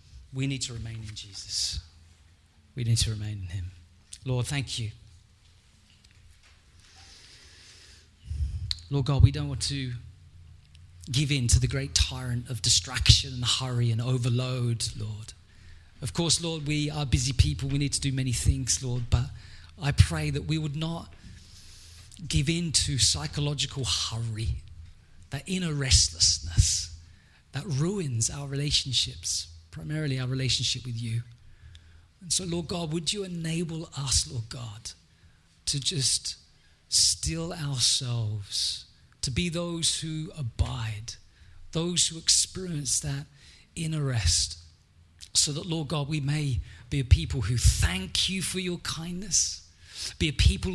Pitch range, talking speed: 95-145 Hz, 135 wpm